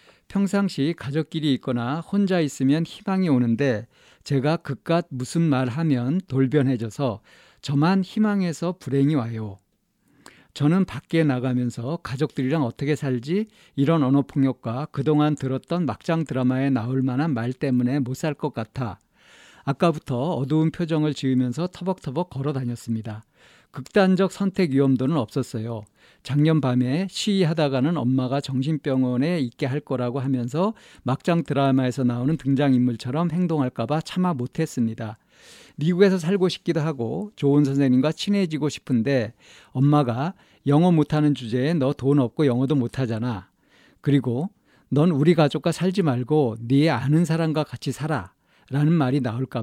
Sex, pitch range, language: male, 130-160 Hz, Korean